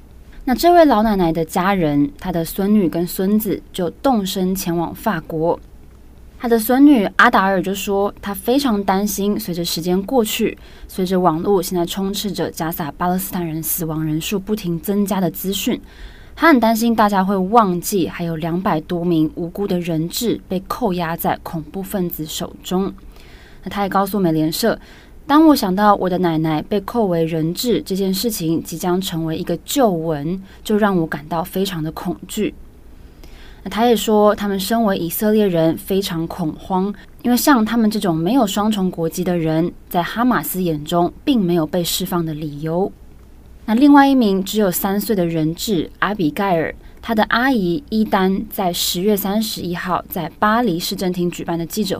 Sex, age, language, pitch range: female, 20-39, Chinese, 170-210 Hz